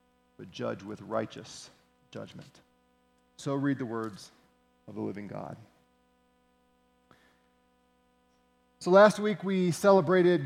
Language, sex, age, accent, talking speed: English, male, 40-59, American, 105 wpm